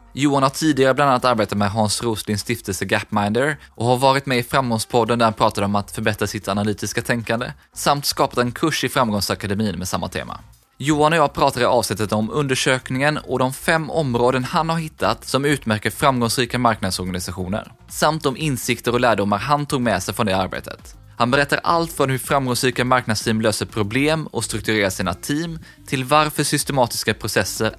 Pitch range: 110-140 Hz